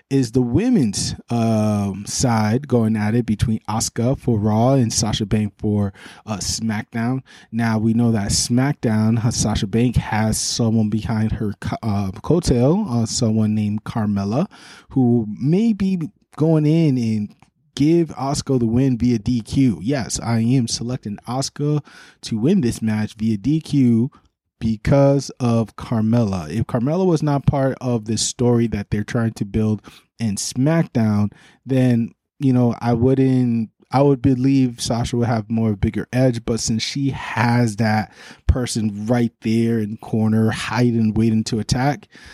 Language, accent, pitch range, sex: English, American, 110-130 Hz, male